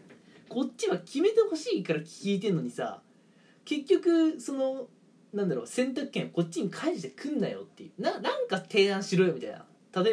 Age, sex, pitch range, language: 20-39, male, 175-265 Hz, Japanese